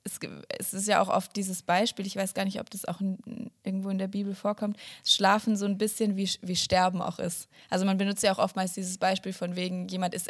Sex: female